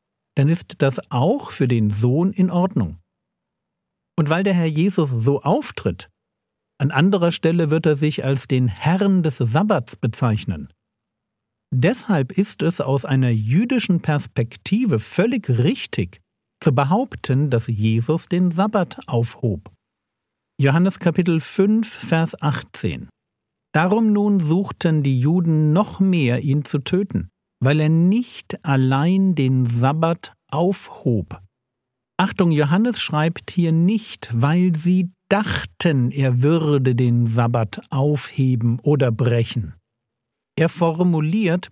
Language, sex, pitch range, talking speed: German, male, 125-185 Hz, 120 wpm